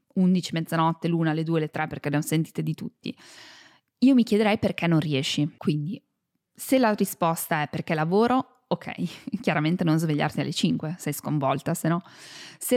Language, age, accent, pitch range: Italian, 20-39, native, 165-225 Hz